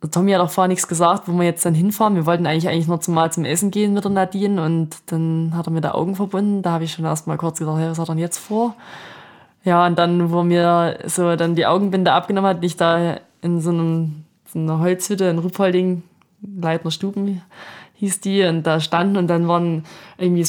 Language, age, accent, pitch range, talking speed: German, 20-39, German, 170-190 Hz, 235 wpm